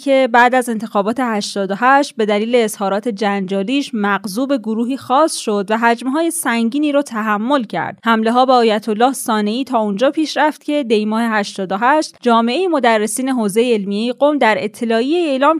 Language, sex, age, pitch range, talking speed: Persian, female, 20-39, 210-275 Hz, 155 wpm